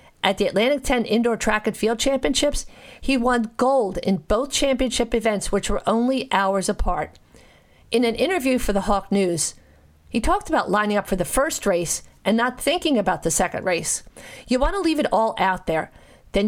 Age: 50-69